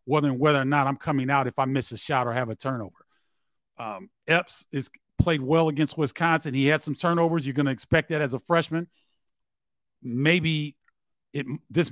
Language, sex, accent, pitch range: English, male, American, 135-160 Hz